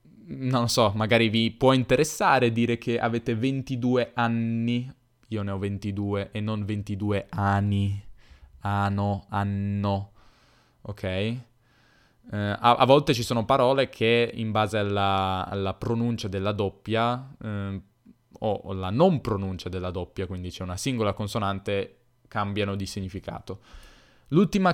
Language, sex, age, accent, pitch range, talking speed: Italian, male, 10-29, native, 100-125 Hz, 130 wpm